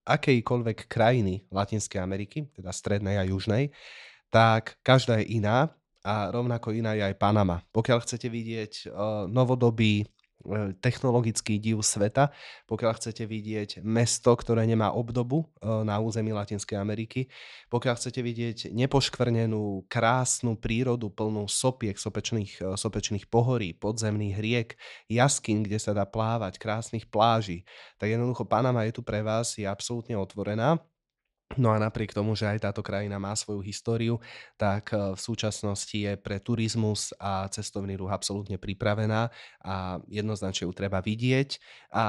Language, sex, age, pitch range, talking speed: Slovak, male, 20-39, 100-115 Hz, 135 wpm